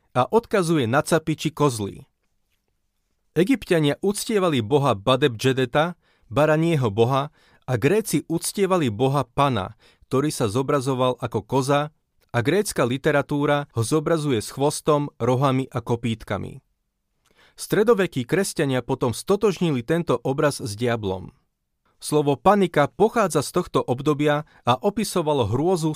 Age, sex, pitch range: 30-49, male, 125-165 Hz